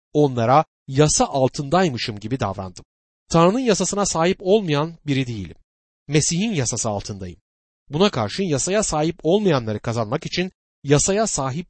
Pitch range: 115-175 Hz